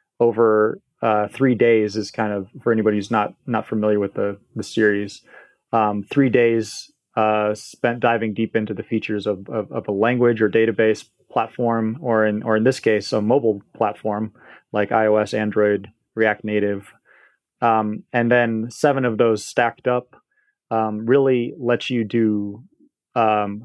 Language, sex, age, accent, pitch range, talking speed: English, male, 30-49, American, 105-120 Hz, 160 wpm